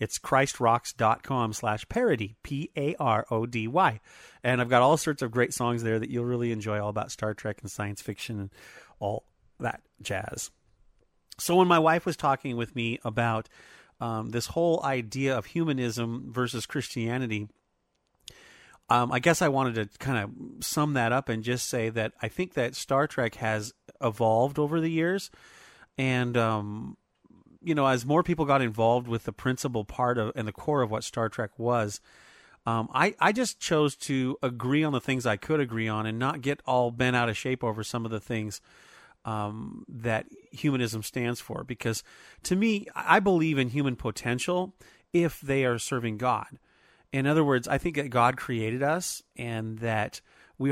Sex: male